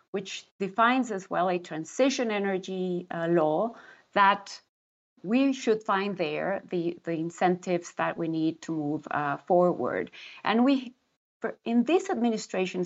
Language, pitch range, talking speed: English, 175-225 Hz, 140 wpm